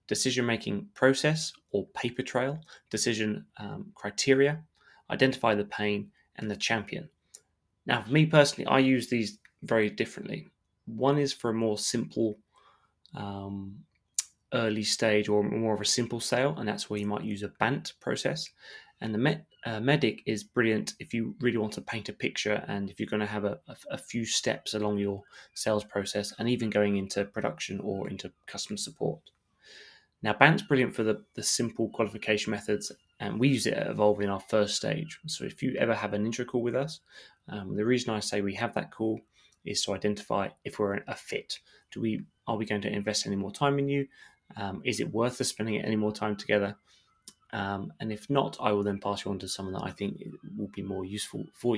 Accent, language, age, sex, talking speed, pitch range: British, English, 20-39, male, 195 wpm, 105-125 Hz